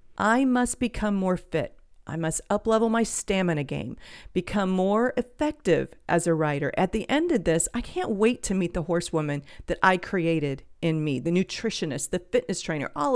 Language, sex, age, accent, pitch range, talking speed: English, female, 40-59, American, 165-230 Hz, 180 wpm